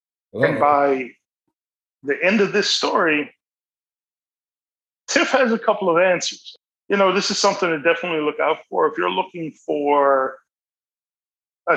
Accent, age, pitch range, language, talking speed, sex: American, 40-59, 135-170 Hz, English, 145 wpm, male